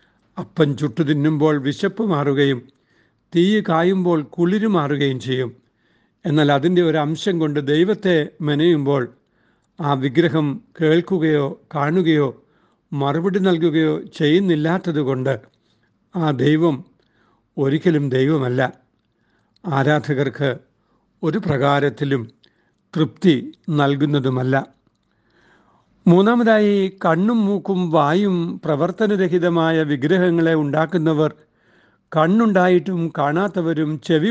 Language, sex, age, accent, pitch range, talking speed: Malayalam, male, 60-79, native, 140-175 Hz, 75 wpm